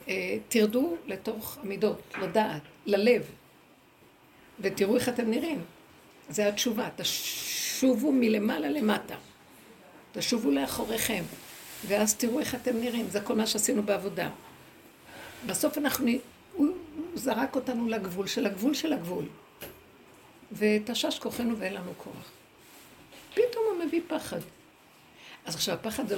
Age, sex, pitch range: 60-79, female, 210-300 Hz